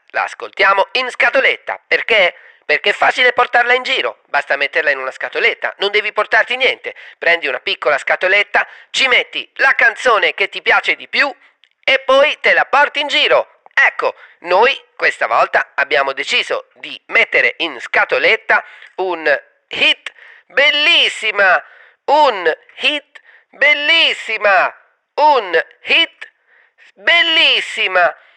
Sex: male